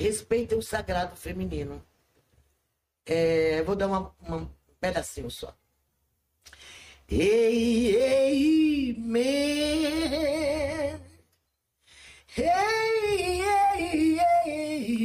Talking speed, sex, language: 60 wpm, male, Portuguese